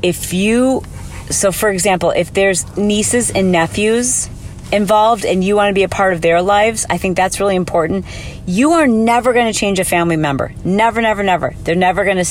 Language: English